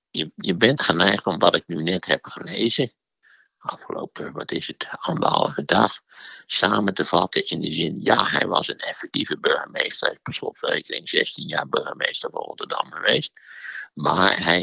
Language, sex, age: Dutch, male, 60-79